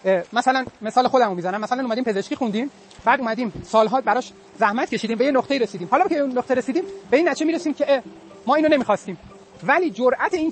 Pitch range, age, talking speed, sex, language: 195-255 Hz, 30-49, 205 wpm, male, Persian